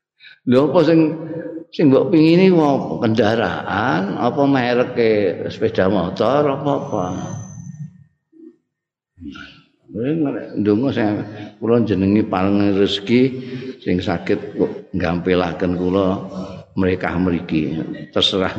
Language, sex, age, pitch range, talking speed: Indonesian, male, 50-69, 100-135 Hz, 90 wpm